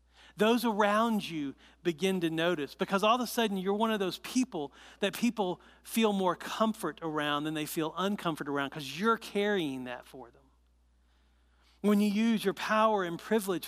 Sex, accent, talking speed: male, American, 175 wpm